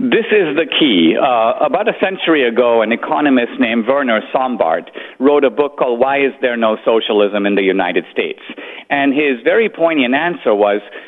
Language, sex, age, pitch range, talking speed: English, male, 50-69, 140-220 Hz, 180 wpm